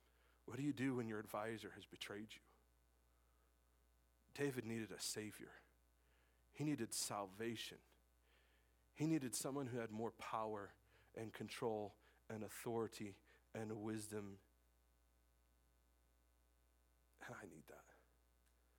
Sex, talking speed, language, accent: male, 110 wpm, English, American